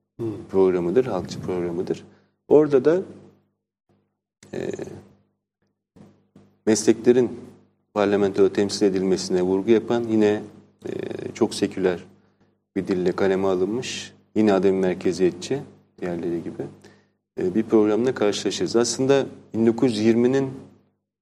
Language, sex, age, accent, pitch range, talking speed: Turkish, male, 40-59, native, 100-115 Hz, 90 wpm